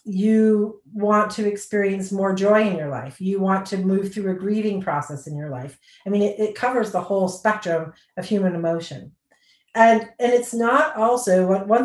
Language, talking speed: English, 190 wpm